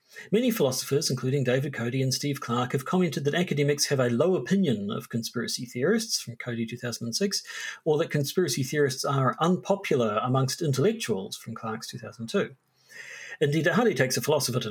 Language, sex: English, male